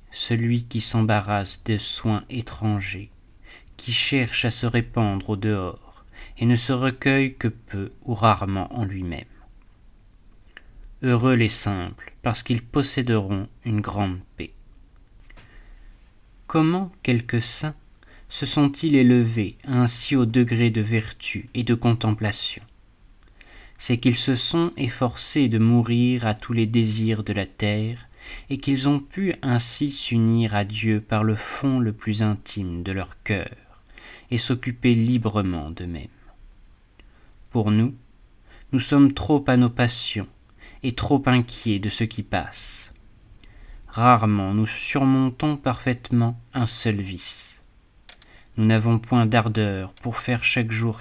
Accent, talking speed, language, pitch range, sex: French, 130 wpm, French, 105-120 Hz, male